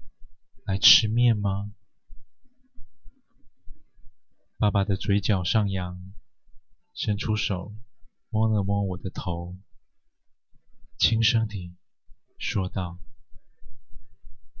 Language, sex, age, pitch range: Chinese, male, 20-39, 100-115 Hz